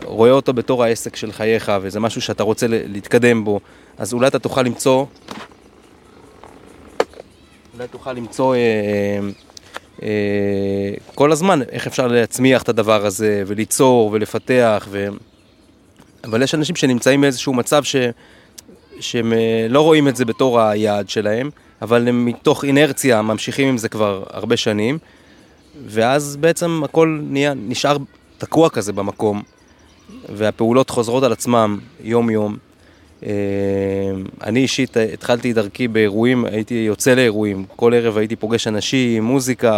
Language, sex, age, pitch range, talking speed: Hebrew, male, 20-39, 105-130 Hz, 130 wpm